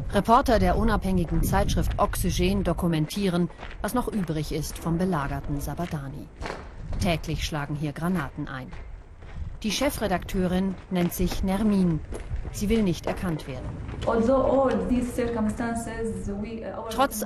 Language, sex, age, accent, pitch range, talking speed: German, female, 40-59, German, 155-215 Hz, 100 wpm